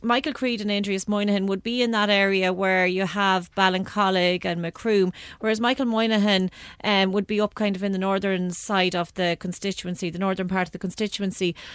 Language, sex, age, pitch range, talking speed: English, female, 30-49, 195-220 Hz, 195 wpm